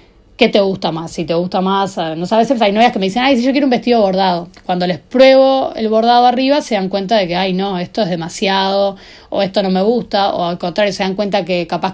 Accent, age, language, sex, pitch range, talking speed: Argentinian, 30-49, Spanish, female, 190-235 Hz, 255 wpm